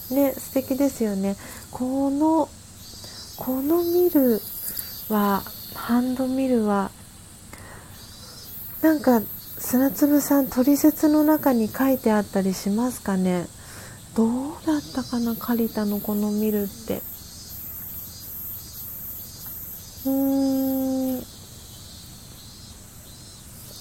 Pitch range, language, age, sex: 190-260 Hz, Japanese, 40-59, female